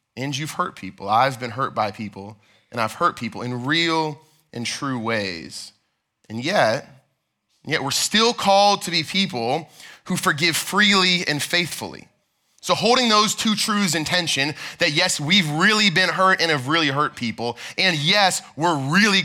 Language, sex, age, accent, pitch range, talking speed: English, male, 20-39, American, 130-180 Hz, 170 wpm